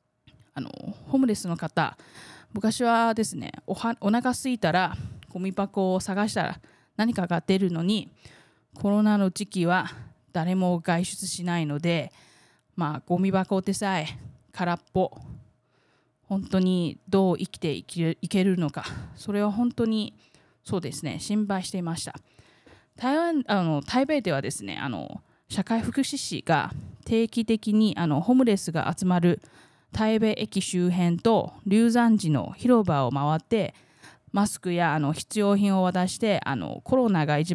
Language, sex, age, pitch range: Japanese, female, 20-39, 160-205 Hz